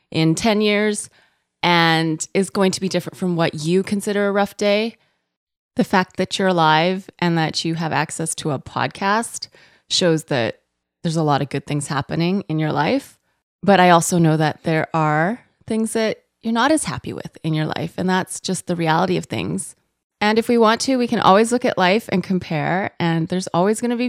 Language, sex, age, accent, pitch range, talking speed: English, female, 20-39, American, 165-215 Hz, 210 wpm